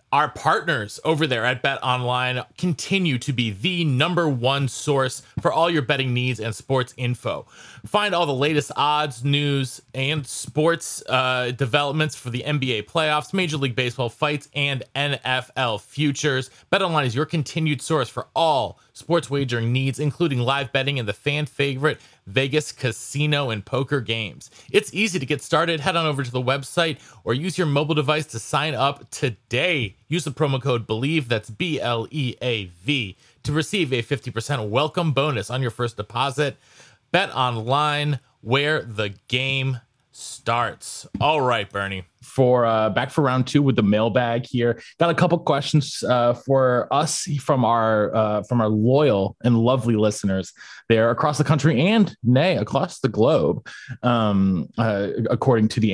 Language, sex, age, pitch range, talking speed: English, male, 30-49, 120-150 Hz, 165 wpm